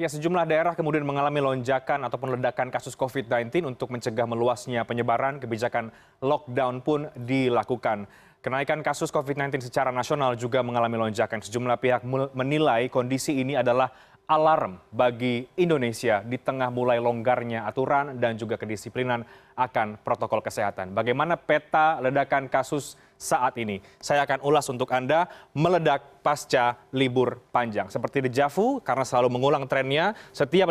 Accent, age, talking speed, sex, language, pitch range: native, 20-39, 135 wpm, male, Indonesian, 120-150 Hz